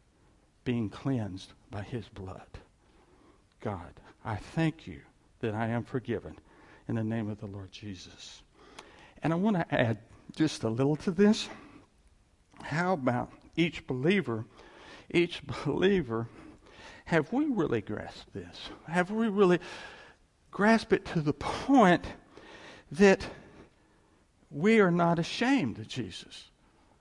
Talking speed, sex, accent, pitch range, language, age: 125 wpm, male, American, 115-180 Hz, English, 60-79